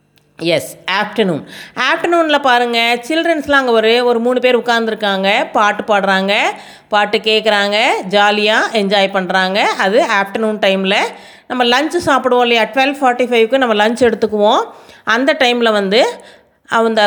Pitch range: 215-275 Hz